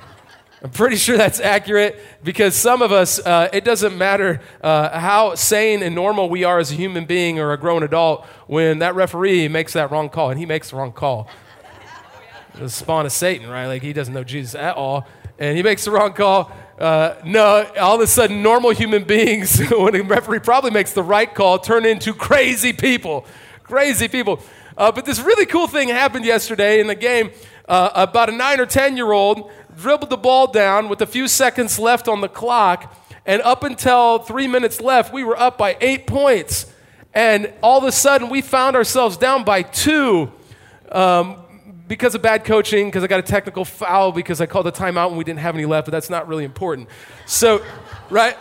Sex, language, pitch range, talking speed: male, English, 175-240 Hz, 205 wpm